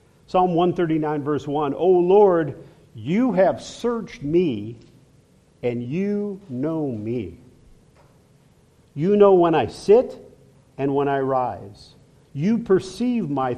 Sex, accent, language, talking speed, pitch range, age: male, American, English, 115 wpm, 135-190 Hz, 50-69